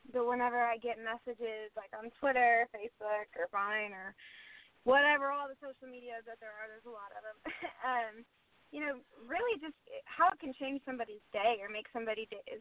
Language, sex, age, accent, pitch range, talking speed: English, female, 20-39, American, 215-235 Hz, 190 wpm